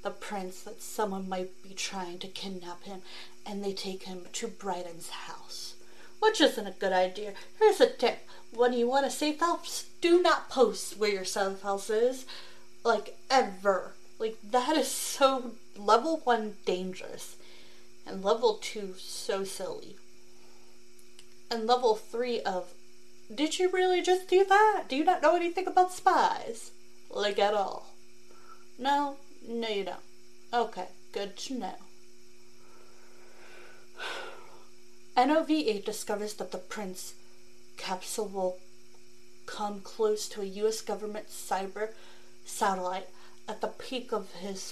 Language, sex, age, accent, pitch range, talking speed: English, female, 30-49, American, 180-240 Hz, 135 wpm